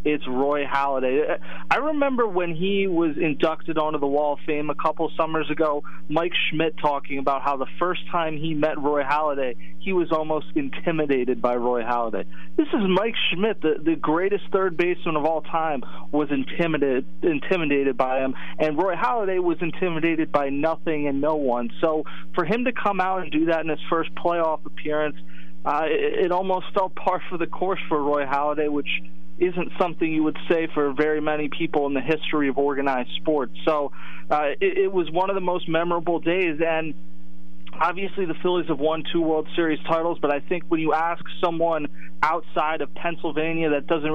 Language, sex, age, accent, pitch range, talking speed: English, male, 30-49, American, 145-175 Hz, 190 wpm